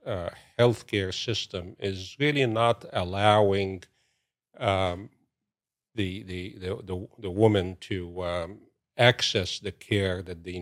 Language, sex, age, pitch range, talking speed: English, male, 50-69, 95-115 Hz, 125 wpm